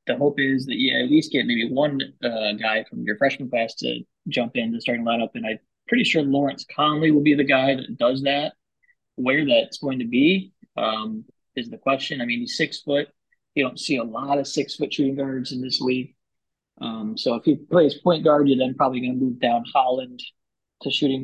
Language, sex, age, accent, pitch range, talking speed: English, male, 20-39, American, 120-150 Hz, 225 wpm